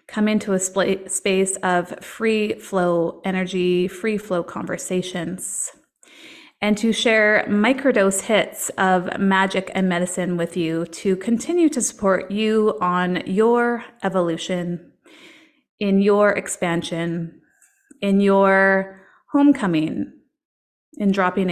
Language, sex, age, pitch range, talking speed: English, female, 30-49, 180-220 Hz, 110 wpm